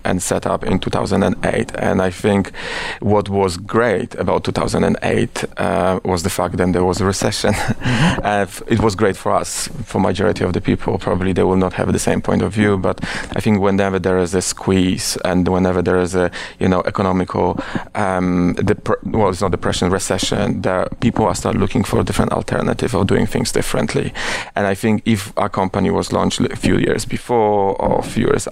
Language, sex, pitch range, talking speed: German, male, 90-100 Hz, 205 wpm